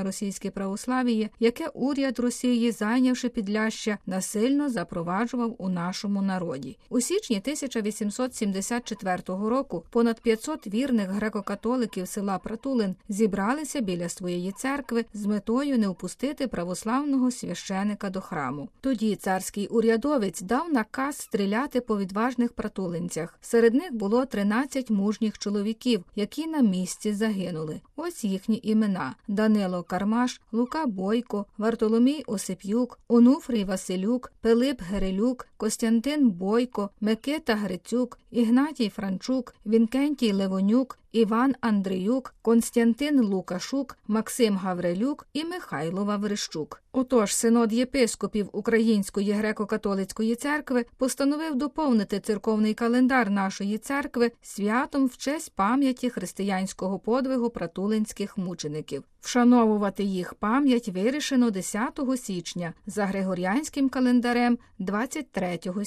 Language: Ukrainian